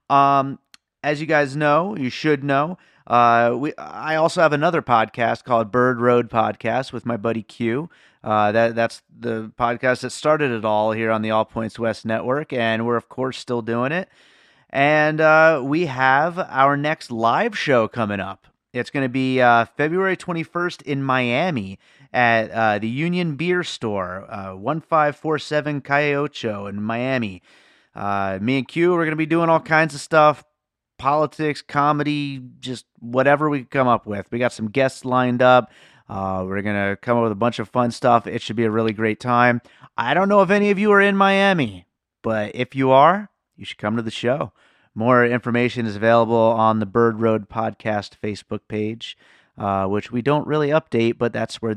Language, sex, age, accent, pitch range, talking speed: English, male, 30-49, American, 110-145 Hz, 190 wpm